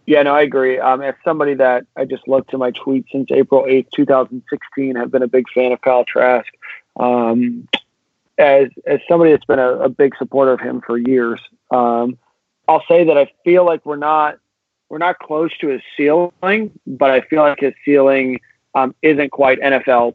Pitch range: 125-135 Hz